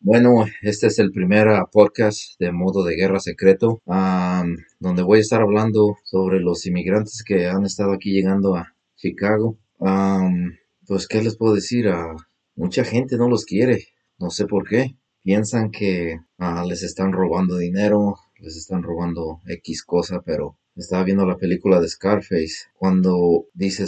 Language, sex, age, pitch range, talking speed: English, male, 30-49, 90-105 Hz, 150 wpm